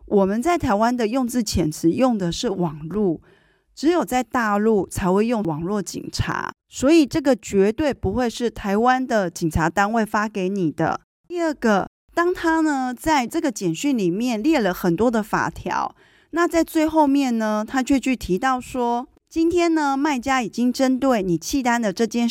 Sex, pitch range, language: female, 190-275 Hz, Chinese